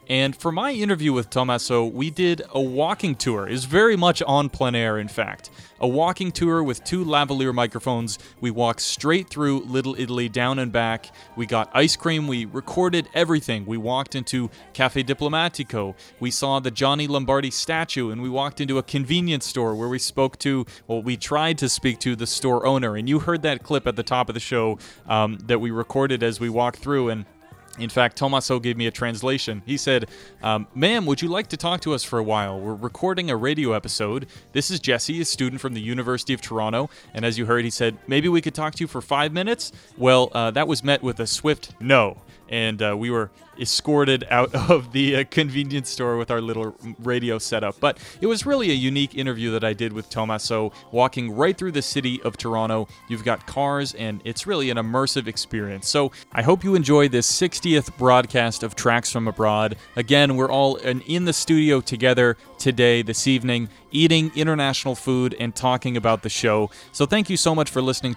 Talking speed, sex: 210 wpm, male